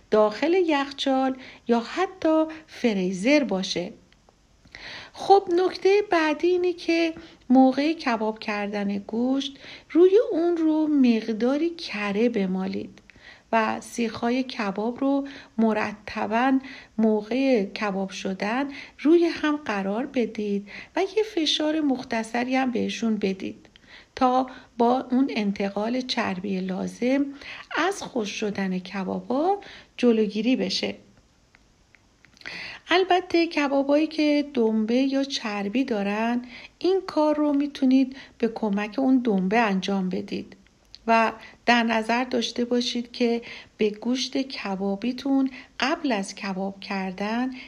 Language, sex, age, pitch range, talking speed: Persian, female, 50-69, 210-280 Hz, 100 wpm